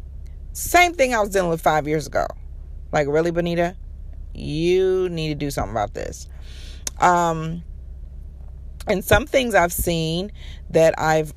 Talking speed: 145 wpm